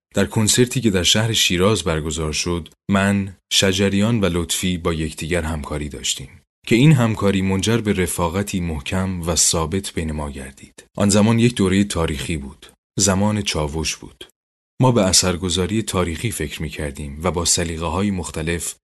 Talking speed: 155 wpm